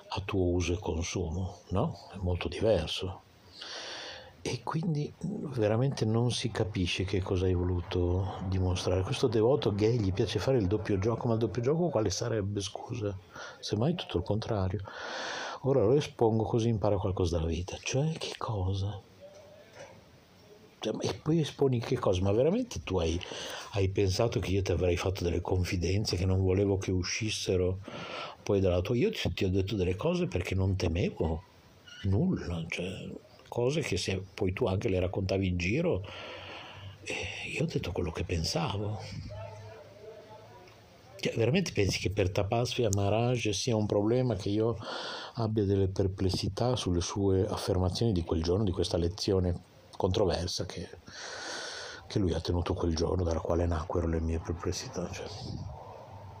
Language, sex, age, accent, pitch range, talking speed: Italian, male, 60-79, native, 90-115 Hz, 155 wpm